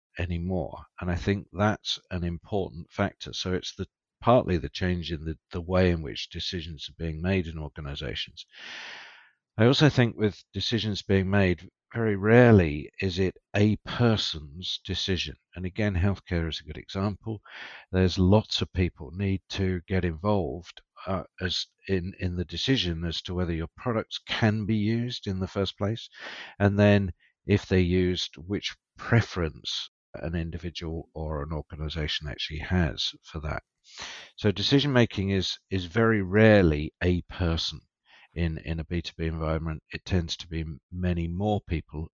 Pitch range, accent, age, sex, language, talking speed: 80-100 Hz, British, 50-69, male, English, 155 wpm